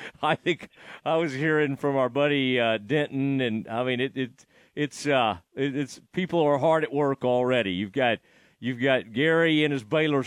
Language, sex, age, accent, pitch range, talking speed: English, male, 40-59, American, 140-190 Hz, 195 wpm